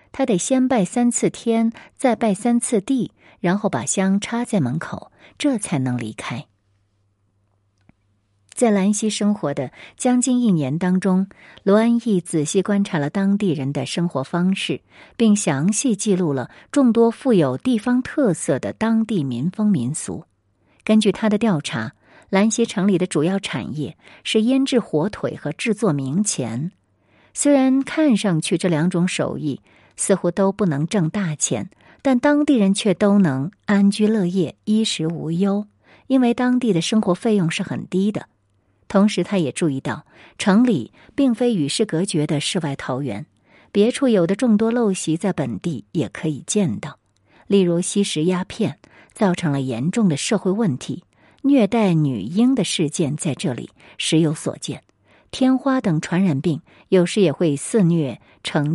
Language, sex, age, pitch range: Chinese, female, 50-69, 155-225 Hz